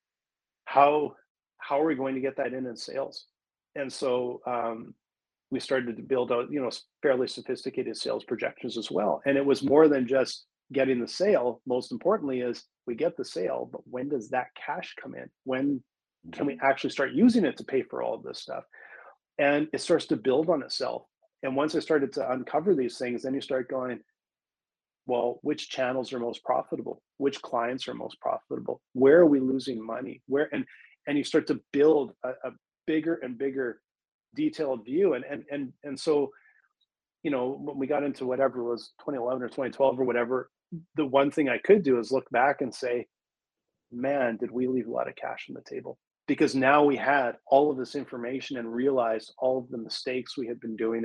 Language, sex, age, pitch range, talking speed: English, male, 30-49, 125-145 Hz, 200 wpm